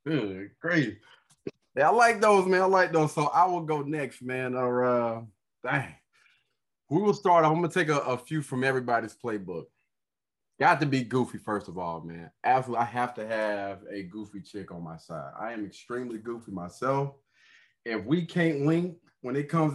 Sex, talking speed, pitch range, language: male, 190 wpm, 110-150 Hz, English